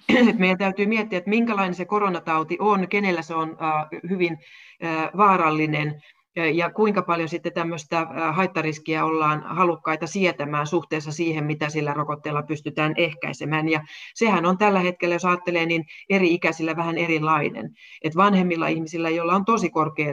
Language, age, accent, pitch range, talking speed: Finnish, 30-49, native, 155-180 Hz, 140 wpm